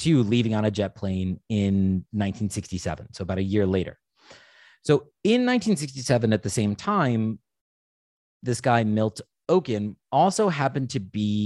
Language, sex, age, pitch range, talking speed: English, male, 30-49, 100-135 Hz, 145 wpm